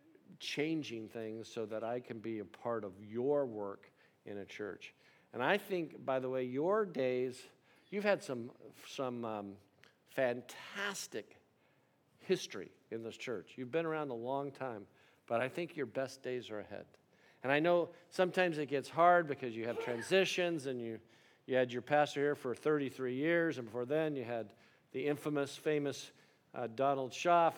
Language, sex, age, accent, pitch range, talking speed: English, male, 50-69, American, 120-150 Hz, 170 wpm